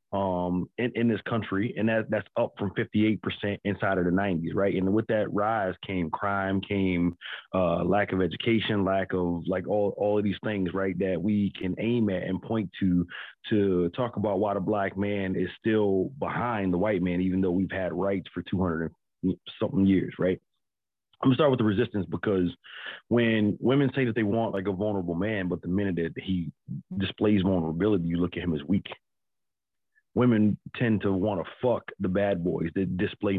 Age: 30-49